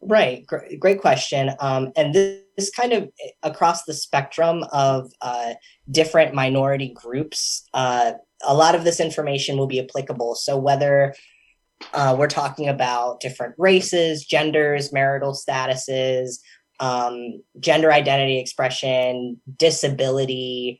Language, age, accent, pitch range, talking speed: English, 10-29, American, 125-150 Hz, 120 wpm